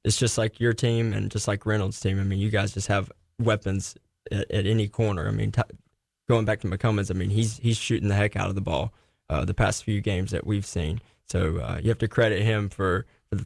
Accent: American